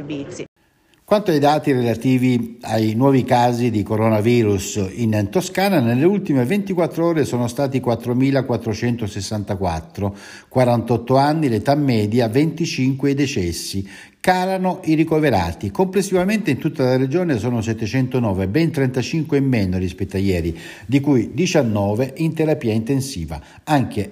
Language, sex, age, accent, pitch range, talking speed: Italian, male, 60-79, native, 105-145 Hz, 120 wpm